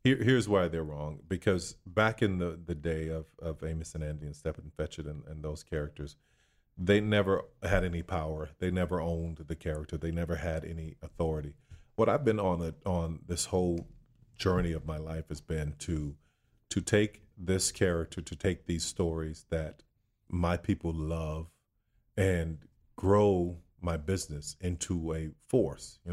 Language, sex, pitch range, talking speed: English, male, 80-95 Hz, 165 wpm